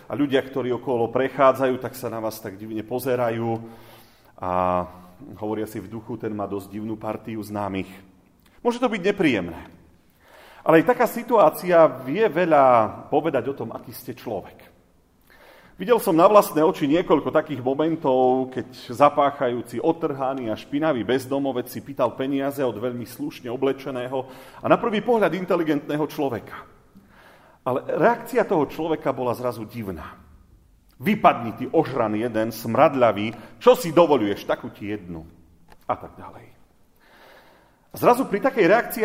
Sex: male